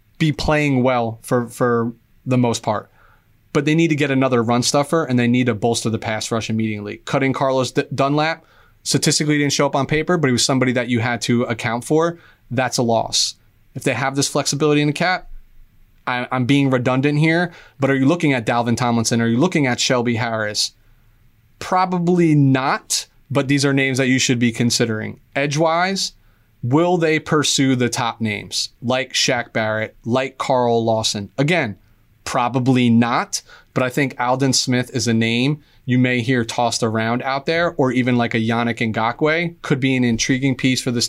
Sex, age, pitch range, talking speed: male, 20-39, 115-145 Hz, 190 wpm